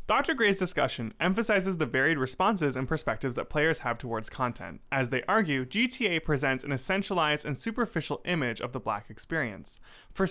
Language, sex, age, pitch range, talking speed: English, male, 20-39, 130-185 Hz, 170 wpm